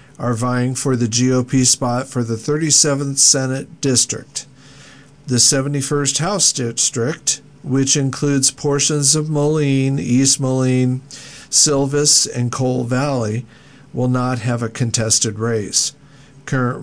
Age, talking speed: 50-69, 120 wpm